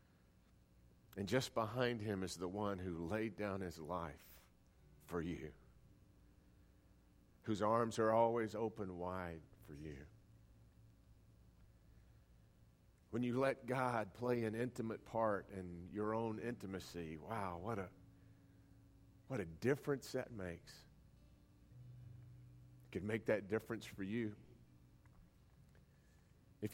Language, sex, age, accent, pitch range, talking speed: English, male, 50-69, American, 90-115 Hz, 110 wpm